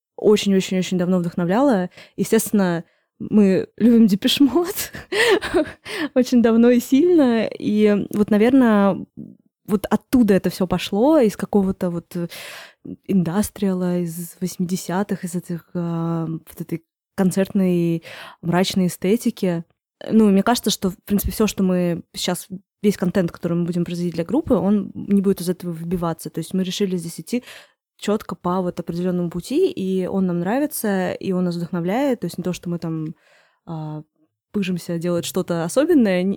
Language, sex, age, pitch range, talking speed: Russian, female, 20-39, 180-225 Hz, 145 wpm